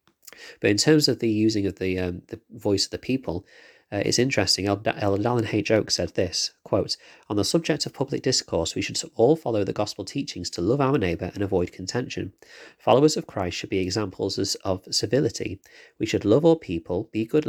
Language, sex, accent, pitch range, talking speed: English, male, British, 95-125 Hz, 200 wpm